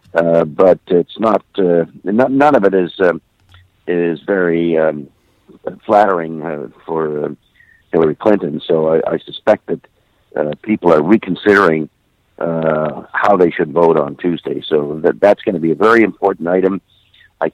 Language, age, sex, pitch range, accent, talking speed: English, 50-69, male, 80-100 Hz, American, 155 wpm